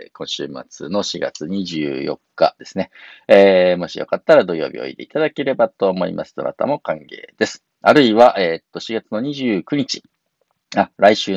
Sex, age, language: male, 40-59, Japanese